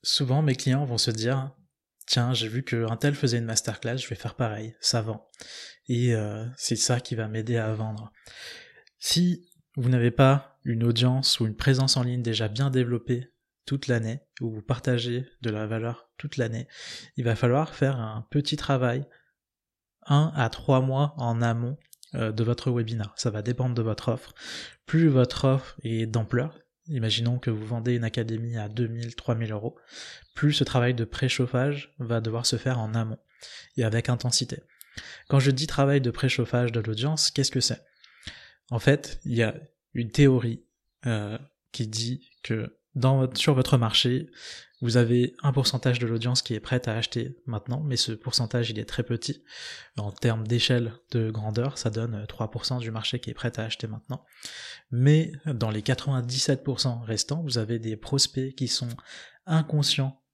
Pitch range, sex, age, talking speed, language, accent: 115-135 Hz, male, 20-39, 180 wpm, French, French